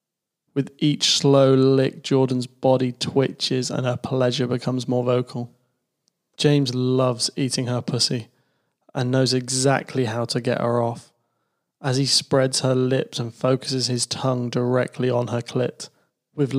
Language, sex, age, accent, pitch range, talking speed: English, male, 20-39, British, 125-135 Hz, 145 wpm